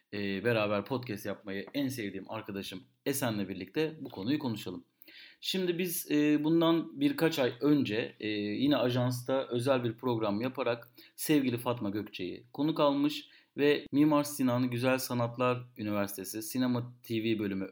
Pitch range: 115-135 Hz